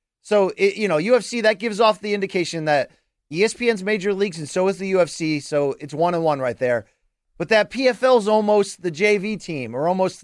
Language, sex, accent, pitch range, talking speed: English, male, American, 170-225 Hz, 200 wpm